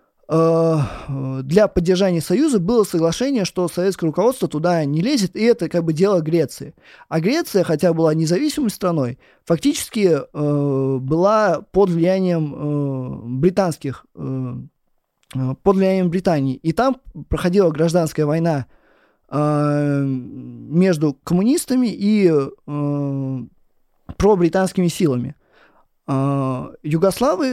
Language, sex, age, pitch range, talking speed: Russian, male, 20-39, 150-195 Hz, 90 wpm